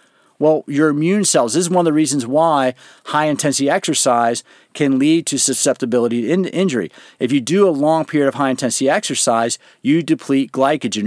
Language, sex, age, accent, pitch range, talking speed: English, male, 50-69, American, 130-160 Hz, 175 wpm